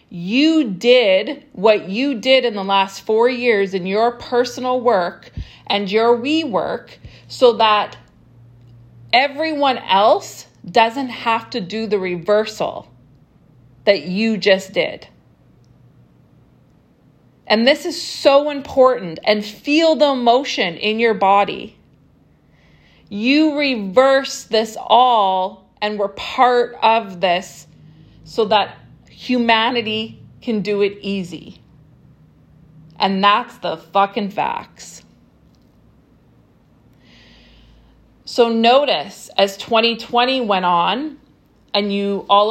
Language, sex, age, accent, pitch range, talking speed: English, female, 30-49, American, 195-250 Hz, 105 wpm